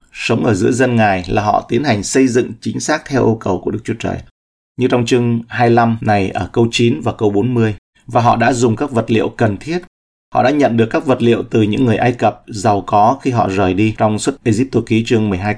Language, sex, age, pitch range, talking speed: Vietnamese, male, 30-49, 95-120 Hz, 245 wpm